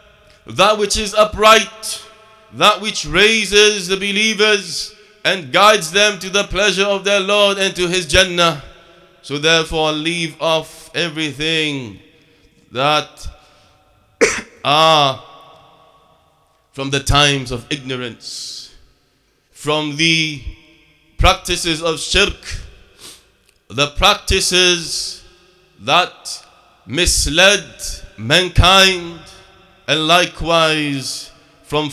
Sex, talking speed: male, 90 wpm